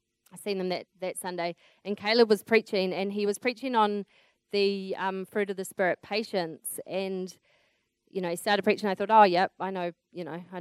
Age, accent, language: 20-39, Australian, English